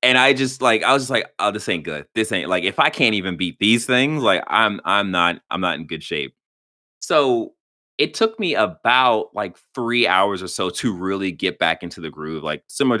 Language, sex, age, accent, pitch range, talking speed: English, male, 20-39, American, 85-120 Hz, 230 wpm